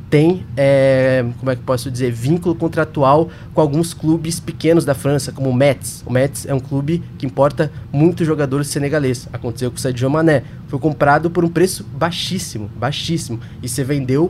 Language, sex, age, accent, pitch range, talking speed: Portuguese, male, 20-39, Brazilian, 125-155 Hz, 180 wpm